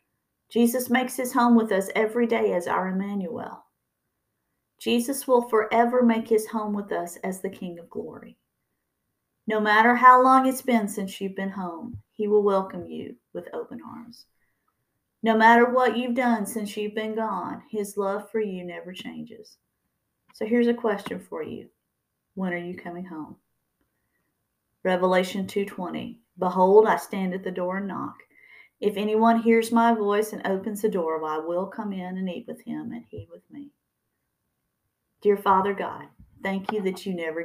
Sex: female